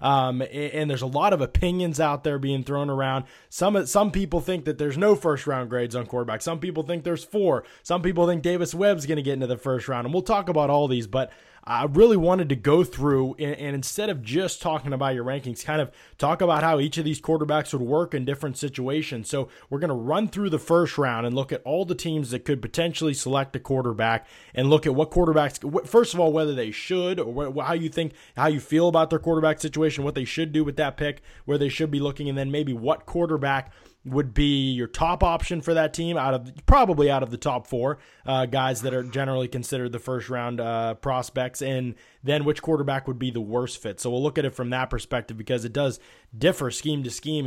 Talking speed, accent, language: 240 wpm, American, English